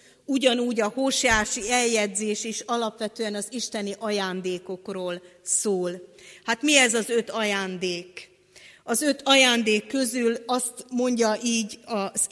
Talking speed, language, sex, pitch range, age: 115 wpm, Hungarian, female, 200-245 Hz, 40-59